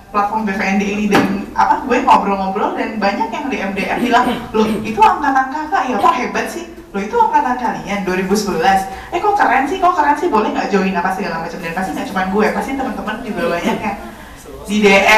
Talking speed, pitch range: 195 wpm, 195-255 Hz